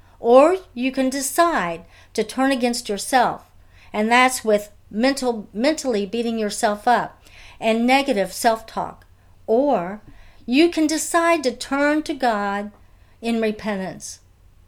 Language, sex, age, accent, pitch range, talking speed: English, female, 60-79, American, 175-260 Hz, 120 wpm